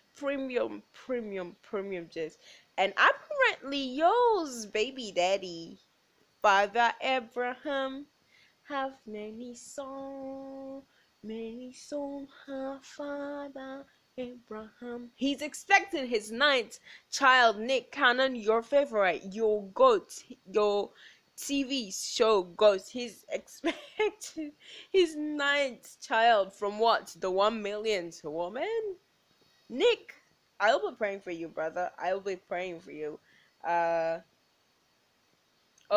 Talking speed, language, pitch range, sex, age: 95 wpm, English, 185-270 Hz, female, 10-29